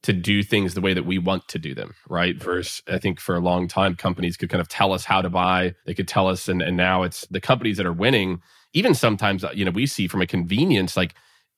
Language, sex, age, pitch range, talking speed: English, male, 30-49, 95-110 Hz, 265 wpm